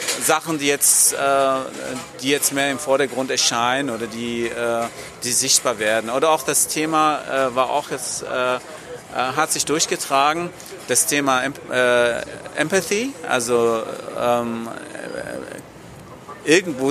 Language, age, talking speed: English, 40-59, 130 wpm